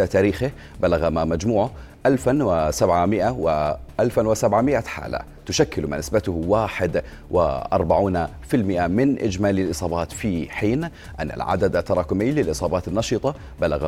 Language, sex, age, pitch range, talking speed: Arabic, male, 40-59, 85-110 Hz, 115 wpm